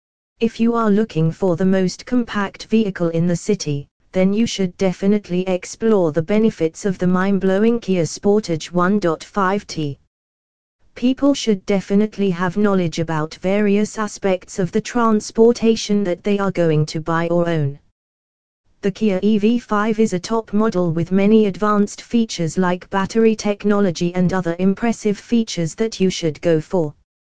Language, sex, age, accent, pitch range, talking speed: English, female, 20-39, British, 170-210 Hz, 145 wpm